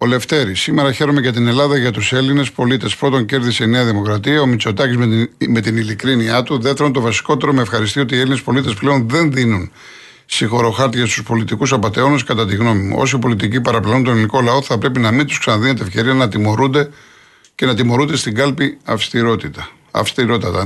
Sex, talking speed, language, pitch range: male, 185 wpm, Greek, 115-140 Hz